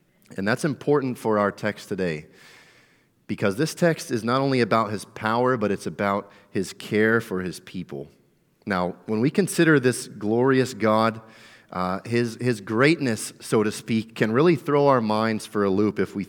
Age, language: 30-49, English